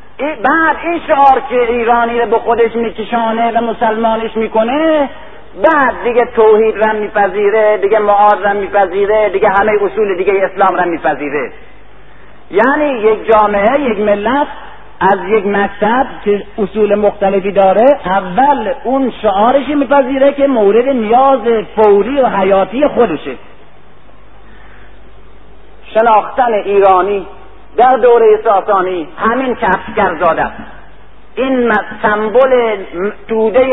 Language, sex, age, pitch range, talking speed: Persian, male, 50-69, 210-255 Hz, 110 wpm